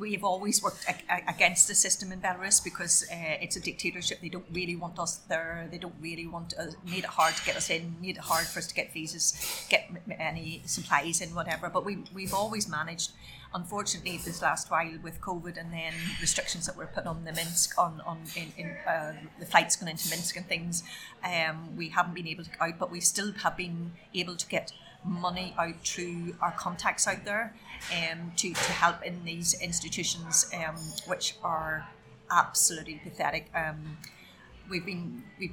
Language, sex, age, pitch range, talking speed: English, female, 30-49, 165-185 Hz, 200 wpm